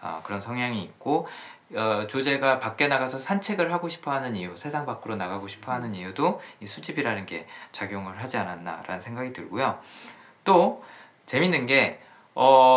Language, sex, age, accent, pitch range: Korean, male, 20-39, native, 110-160 Hz